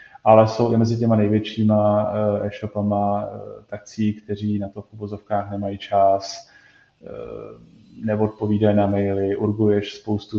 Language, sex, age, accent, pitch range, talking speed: Czech, male, 20-39, native, 100-105 Hz, 115 wpm